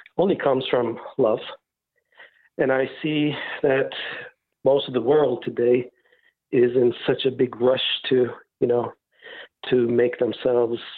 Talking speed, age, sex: 135 wpm, 60-79, male